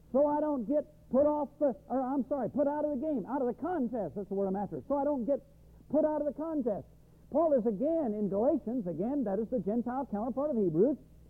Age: 60-79